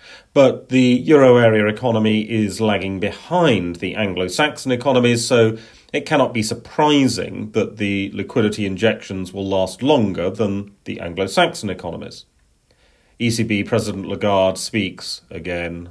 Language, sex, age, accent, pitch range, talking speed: English, male, 40-59, British, 100-125 Hz, 120 wpm